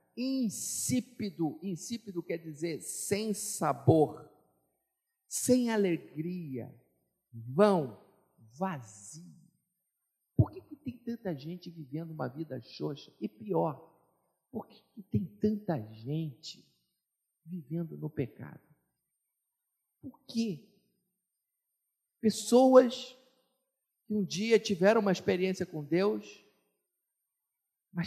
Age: 50-69